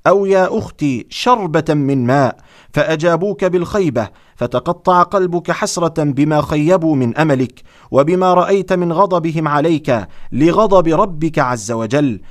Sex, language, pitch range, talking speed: male, Arabic, 135-180 Hz, 115 wpm